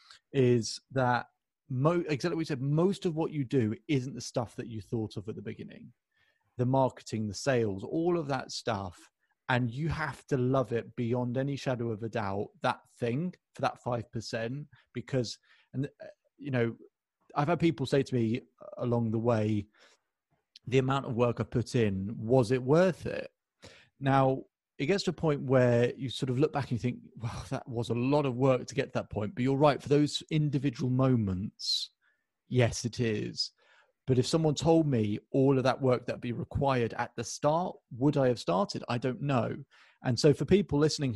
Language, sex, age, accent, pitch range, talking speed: English, male, 30-49, British, 120-150 Hz, 200 wpm